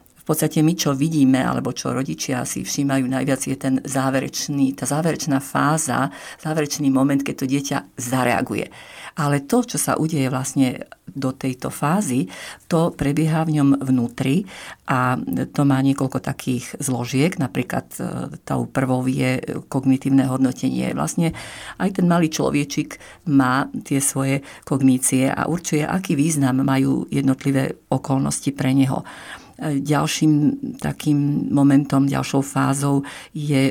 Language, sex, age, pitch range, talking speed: Slovak, female, 50-69, 135-155 Hz, 130 wpm